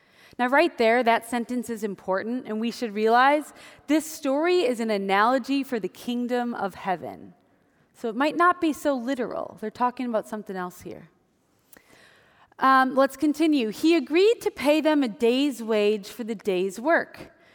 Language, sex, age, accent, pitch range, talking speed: English, female, 20-39, American, 200-280 Hz, 170 wpm